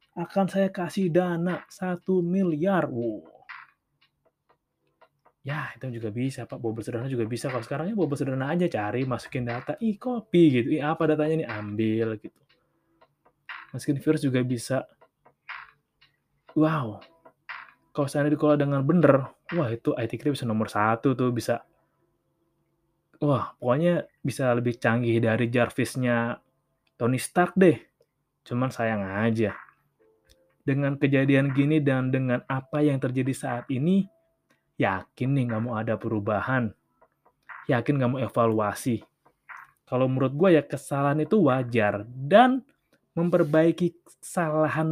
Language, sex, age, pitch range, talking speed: Indonesian, male, 20-39, 120-165 Hz, 125 wpm